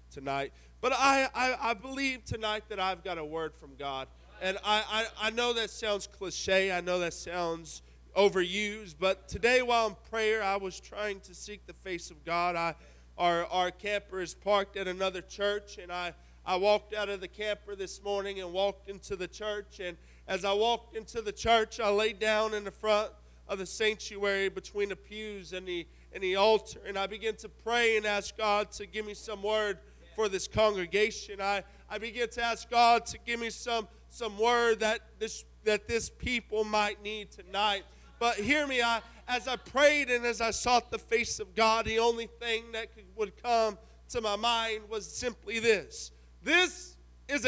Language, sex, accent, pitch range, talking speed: English, male, American, 195-235 Hz, 195 wpm